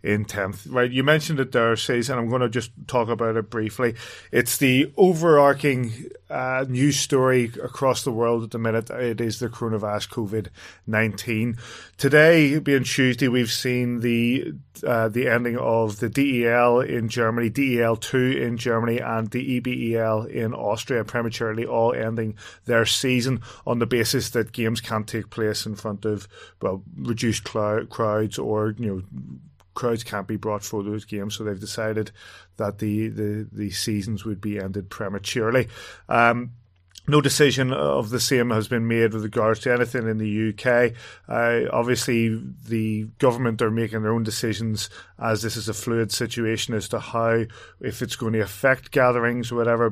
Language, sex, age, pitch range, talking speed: English, male, 30-49, 110-120 Hz, 170 wpm